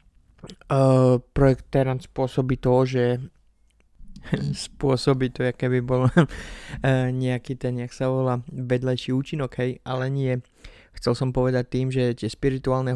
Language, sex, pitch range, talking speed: Slovak, male, 125-130 Hz, 135 wpm